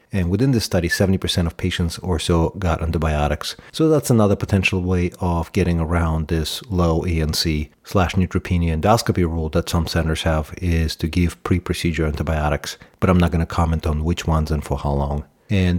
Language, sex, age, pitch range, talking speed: English, male, 40-59, 80-100 Hz, 185 wpm